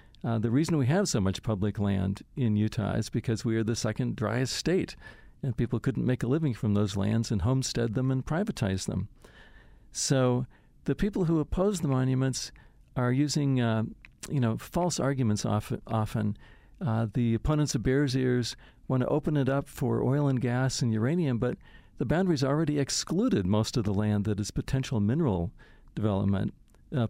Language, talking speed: English, 180 wpm